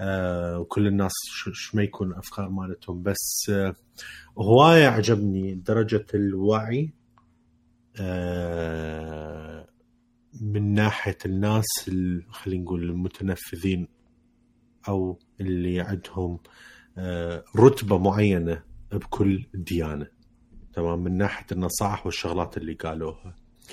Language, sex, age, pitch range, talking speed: Arabic, male, 30-49, 85-105 Hz, 80 wpm